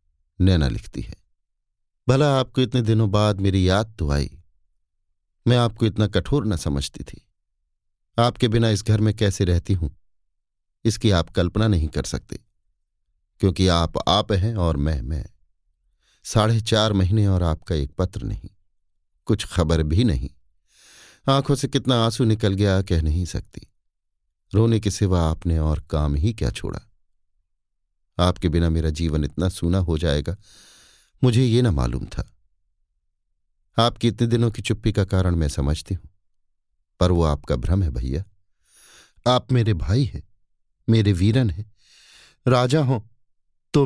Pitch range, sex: 80-115 Hz, male